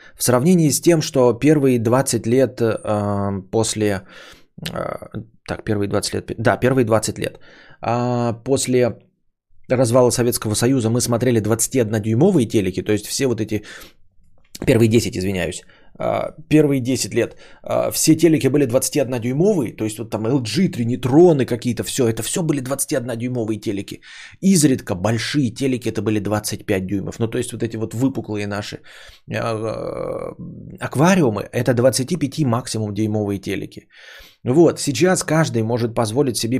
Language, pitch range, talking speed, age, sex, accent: Russian, 110-145 Hz, 130 wpm, 20-39, male, native